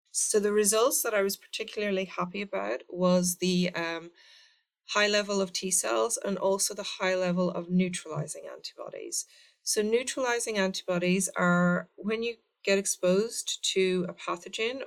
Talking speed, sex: 140 wpm, female